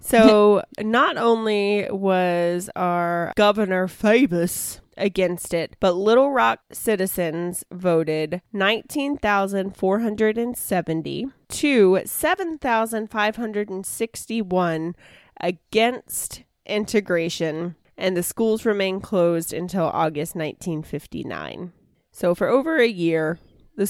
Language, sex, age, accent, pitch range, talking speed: English, female, 20-39, American, 170-215 Hz, 85 wpm